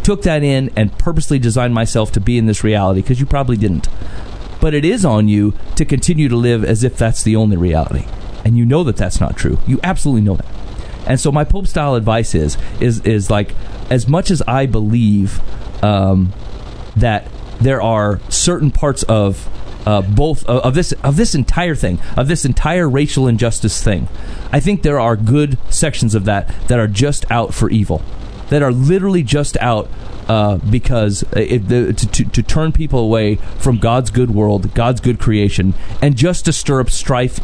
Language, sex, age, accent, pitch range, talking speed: English, male, 30-49, American, 100-130 Hz, 190 wpm